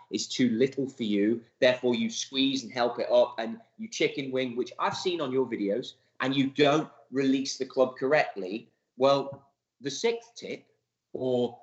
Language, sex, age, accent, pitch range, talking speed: English, male, 30-49, British, 115-155 Hz, 175 wpm